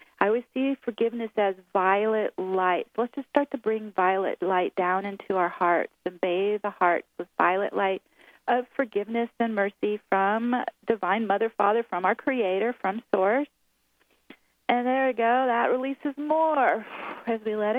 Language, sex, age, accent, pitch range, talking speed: English, female, 40-59, American, 205-250 Hz, 160 wpm